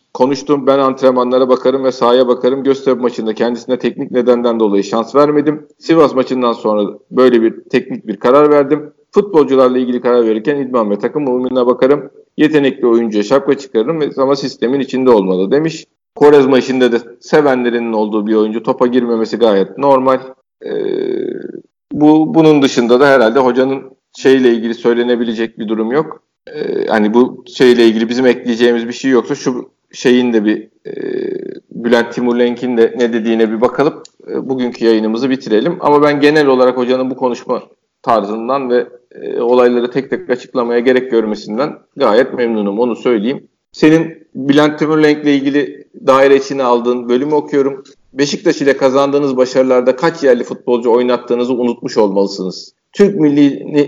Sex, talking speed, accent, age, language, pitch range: male, 150 wpm, native, 50-69, Turkish, 120-145 Hz